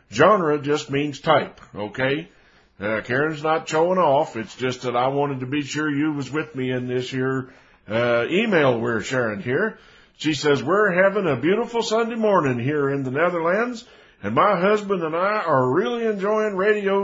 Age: 60-79